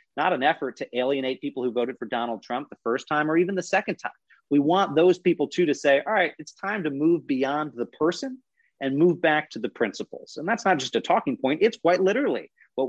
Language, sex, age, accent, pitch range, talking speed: English, male, 40-59, American, 130-170 Hz, 240 wpm